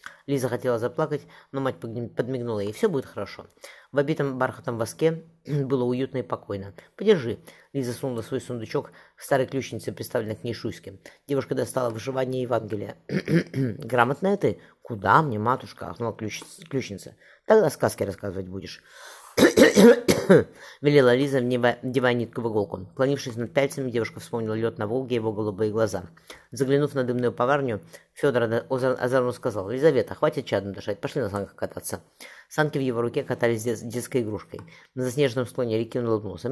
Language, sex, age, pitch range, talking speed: Russian, female, 30-49, 110-140 Hz, 155 wpm